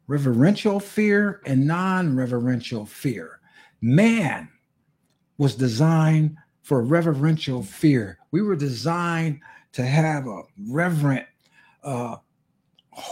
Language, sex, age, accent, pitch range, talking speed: English, male, 50-69, American, 135-180 Hz, 85 wpm